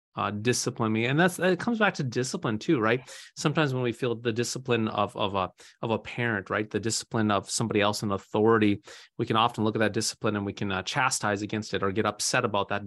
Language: English